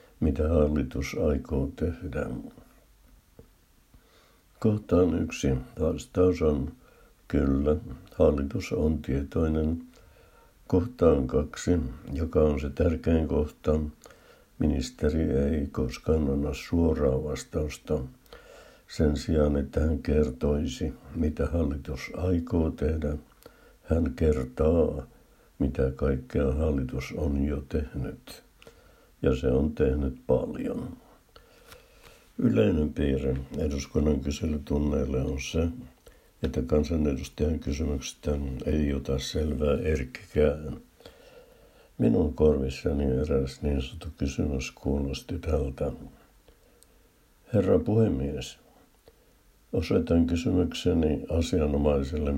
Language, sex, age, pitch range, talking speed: Finnish, male, 60-79, 70-80 Hz, 85 wpm